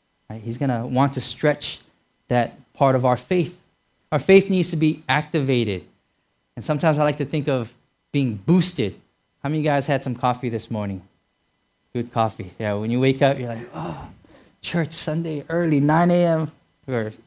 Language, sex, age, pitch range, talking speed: English, male, 10-29, 110-160 Hz, 180 wpm